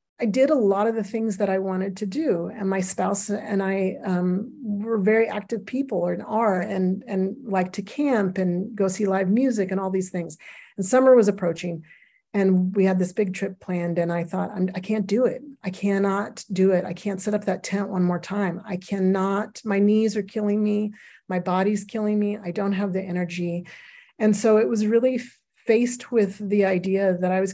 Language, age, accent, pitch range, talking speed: English, 40-59, American, 185-230 Hz, 210 wpm